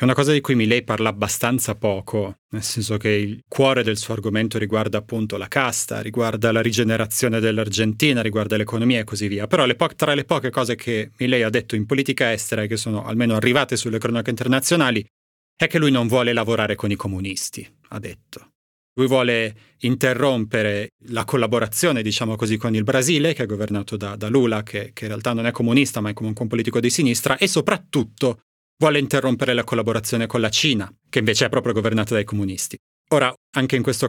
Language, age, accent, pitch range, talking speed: Italian, 30-49, native, 110-130 Hz, 195 wpm